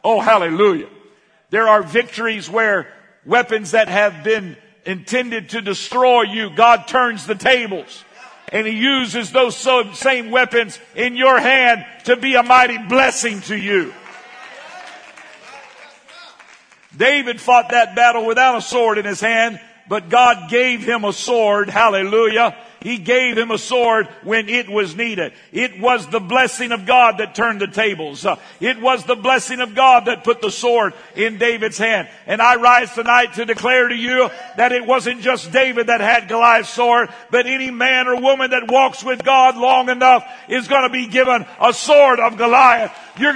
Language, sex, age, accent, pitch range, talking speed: English, male, 60-79, American, 225-260 Hz, 165 wpm